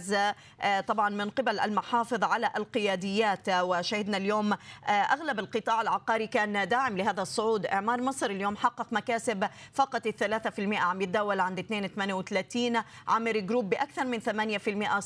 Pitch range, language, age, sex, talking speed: 195-225 Hz, Arabic, 30-49, female, 125 wpm